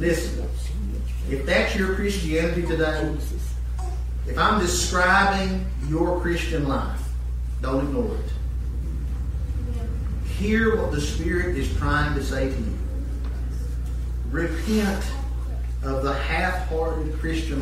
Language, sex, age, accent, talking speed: English, male, 40-59, American, 100 wpm